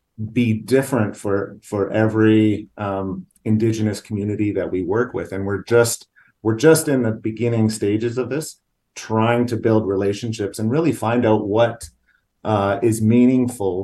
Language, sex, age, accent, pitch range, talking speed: English, male, 30-49, American, 95-115 Hz, 150 wpm